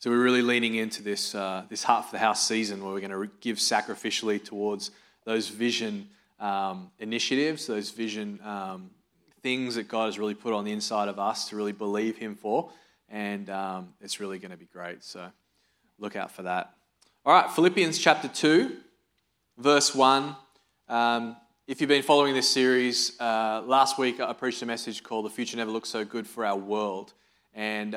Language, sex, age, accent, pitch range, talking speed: English, male, 20-39, Australian, 110-130 Hz, 190 wpm